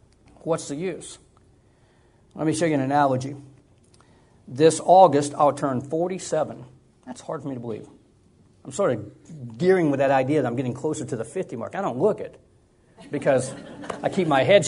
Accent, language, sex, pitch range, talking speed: American, English, male, 130-165 Hz, 180 wpm